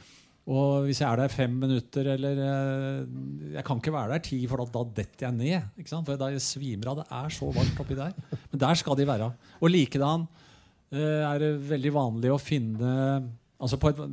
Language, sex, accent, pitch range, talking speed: English, male, Norwegian, 120-145 Hz, 185 wpm